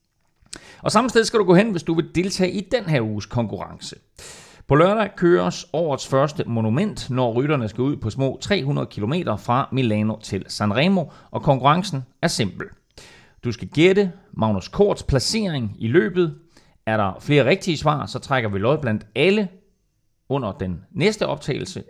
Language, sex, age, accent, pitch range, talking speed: Danish, male, 30-49, native, 110-175 Hz, 165 wpm